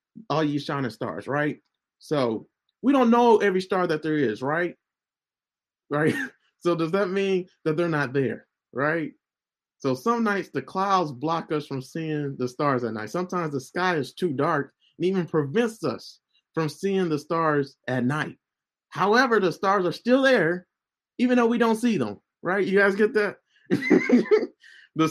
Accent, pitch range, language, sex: American, 150-215 Hz, English, male